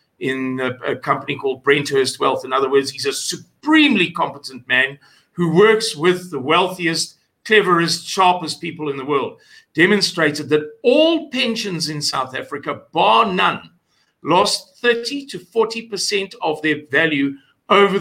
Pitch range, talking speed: 155-225 Hz, 145 wpm